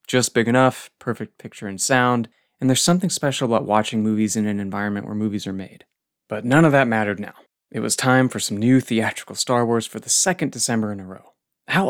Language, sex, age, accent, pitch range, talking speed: English, male, 30-49, American, 105-125 Hz, 220 wpm